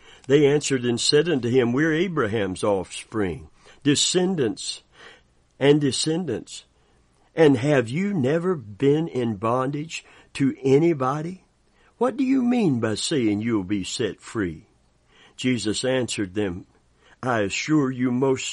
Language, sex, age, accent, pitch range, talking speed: English, male, 60-79, American, 105-145 Hz, 125 wpm